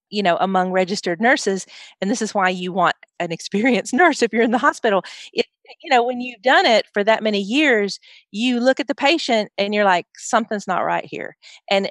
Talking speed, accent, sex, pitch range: 215 wpm, American, female, 180-235 Hz